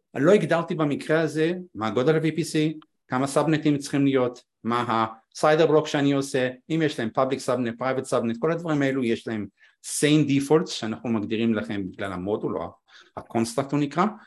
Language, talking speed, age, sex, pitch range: Hebrew, 165 wpm, 50-69, male, 115-155 Hz